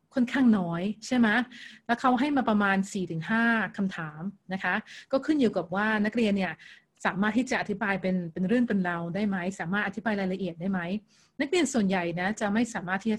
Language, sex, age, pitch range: Thai, female, 30-49, 190-230 Hz